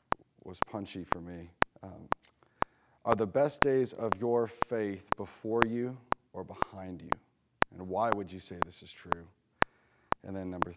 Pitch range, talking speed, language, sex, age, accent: 110-140 Hz, 155 wpm, English, male, 30-49, American